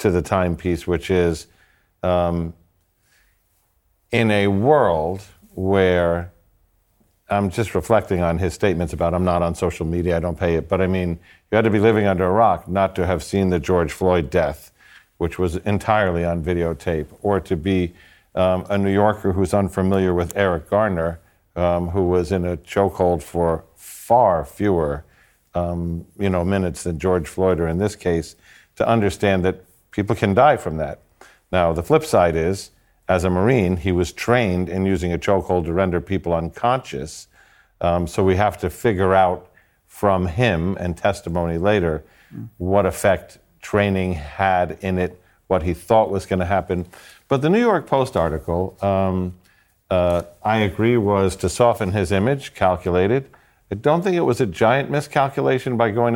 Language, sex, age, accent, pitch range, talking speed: English, male, 50-69, American, 85-100 Hz, 170 wpm